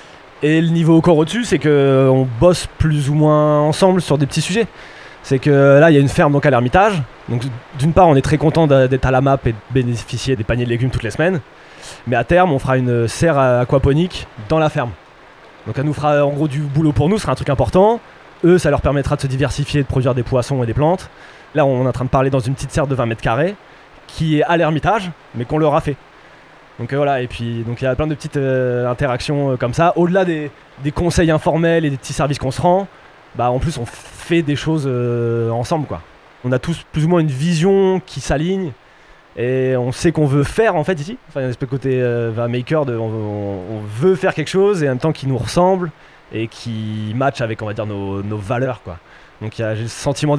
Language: French